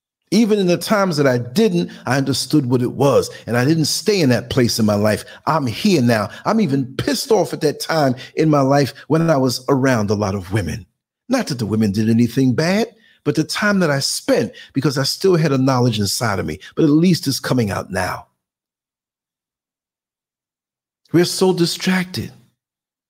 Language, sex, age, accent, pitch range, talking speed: English, male, 50-69, American, 135-200 Hz, 195 wpm